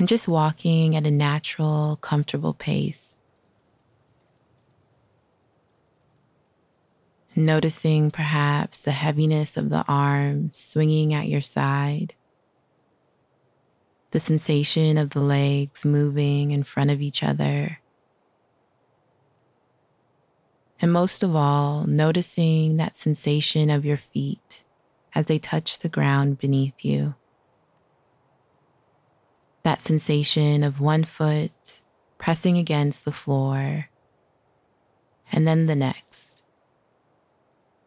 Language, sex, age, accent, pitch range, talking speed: English, female, 20-39, American, 140-160 Hz, 95 wpm